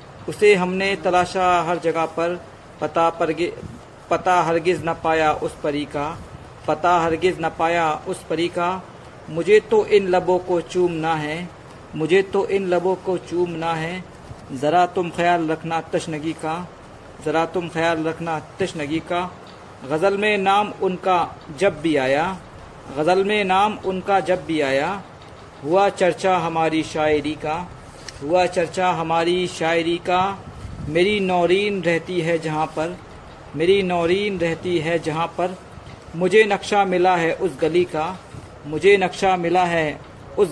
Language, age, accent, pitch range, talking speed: Hindi, 50-69, native, 160-190 Hz, 140 wpm